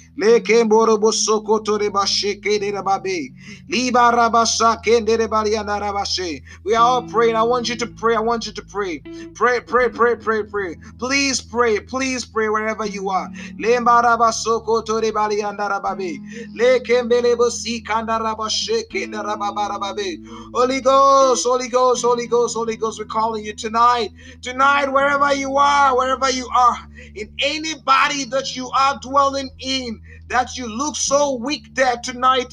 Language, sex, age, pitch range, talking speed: Finnish, male, 30-49, 225-275 Hz, 110 wpm